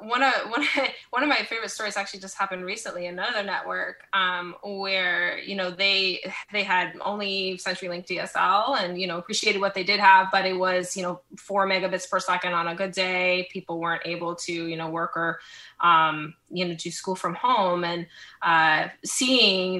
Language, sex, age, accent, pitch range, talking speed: English, female, 20-39, American, 185-245 Hz, 195 wpm